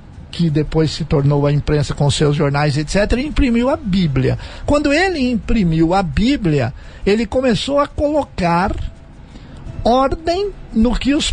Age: 50-69